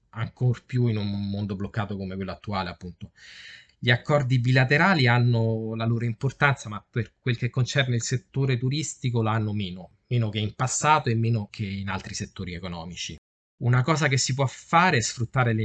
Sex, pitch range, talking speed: male, 95-125 Hz, 180 wpm